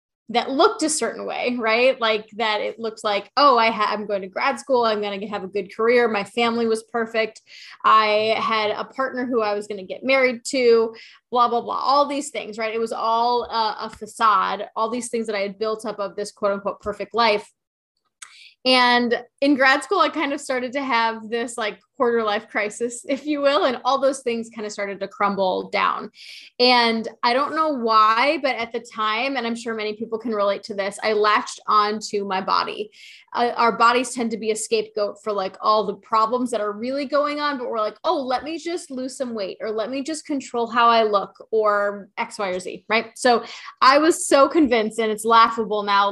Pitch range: 215-255 Hz